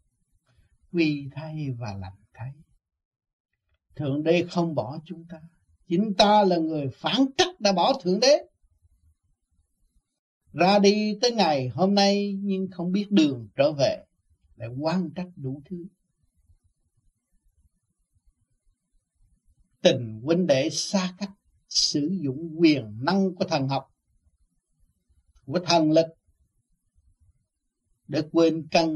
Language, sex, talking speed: Vietnamese, male, 115 wpm